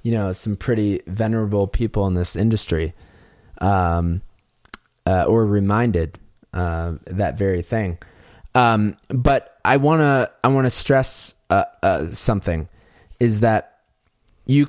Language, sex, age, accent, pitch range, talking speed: English, male, 20-39, American, 90-115 Hz, 125 wpm